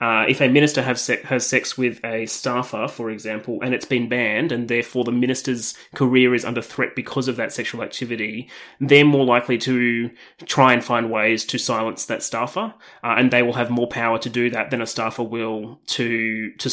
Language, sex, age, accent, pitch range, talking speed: English, male, 20-39, Australian, 115-130 Hz, 200 wpm